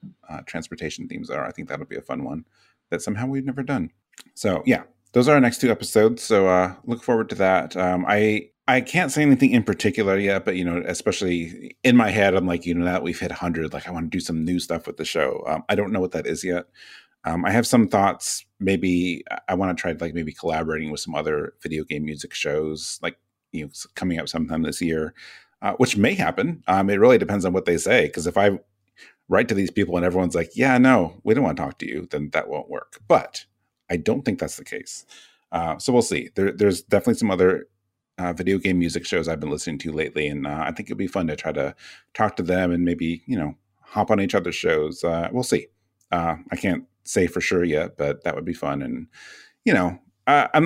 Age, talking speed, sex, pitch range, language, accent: 30-49, 240 wpm, male, 85-100 Hz, English, American